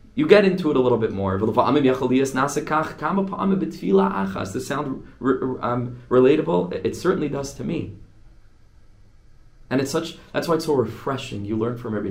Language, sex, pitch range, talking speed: English, male, 105-140 Hz, 155 wpm